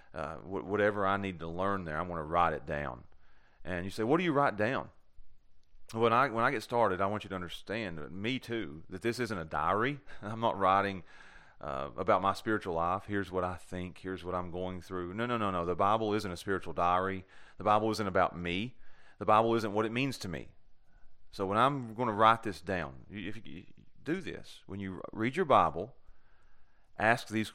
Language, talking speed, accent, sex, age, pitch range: English, 220 wpm, American, male, 30-49, 85-110 Hz